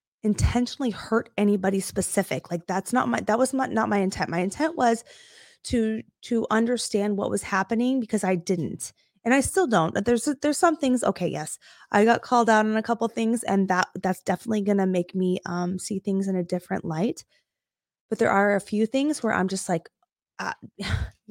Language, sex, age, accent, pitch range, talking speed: English, female, 20-39, American, 185-235 Hz, 195 wpm